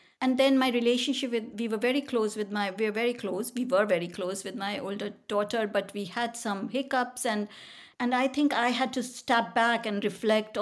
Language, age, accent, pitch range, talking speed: English, 50-69, Indian, 190-235 Hz, 220 wpm